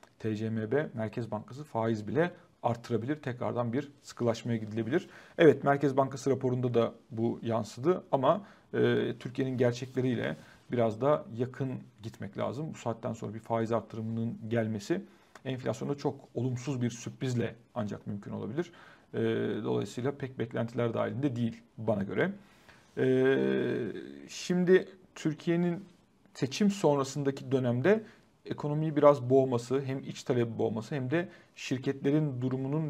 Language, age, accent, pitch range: Turkish, 40-59, native, 115-150 Hz